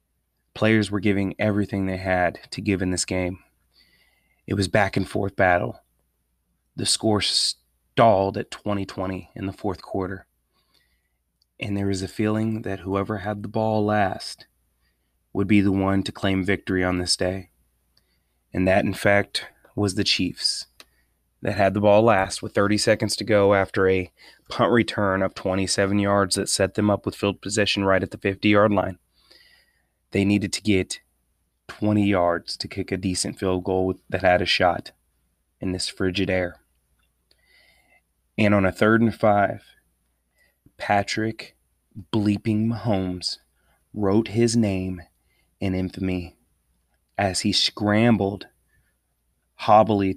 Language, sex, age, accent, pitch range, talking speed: English, male, 30-49, American, 80-105 Hz, 145 wpm